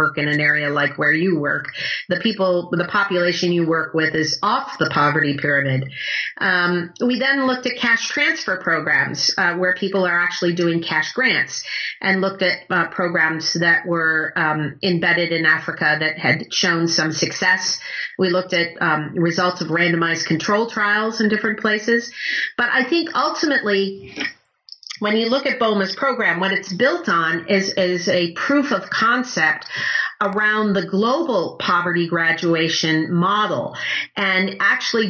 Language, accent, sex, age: English, American, female, 40-59